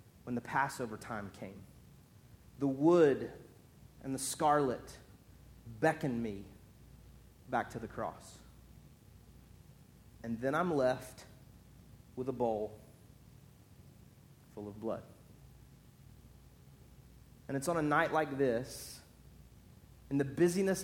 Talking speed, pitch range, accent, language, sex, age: 105 wpm, 120-150 Hz, American, English, male, 40-59